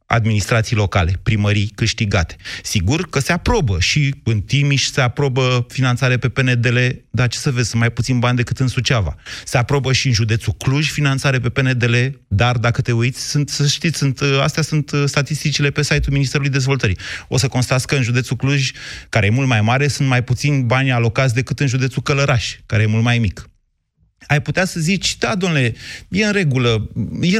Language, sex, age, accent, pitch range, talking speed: Romanian, male, 30-49, native, 110-140 Hz, 185 wpm